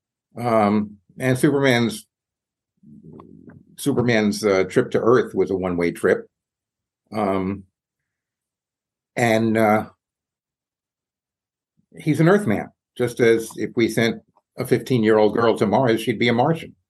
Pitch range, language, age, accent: 100-135 Hz, English, 60-79, American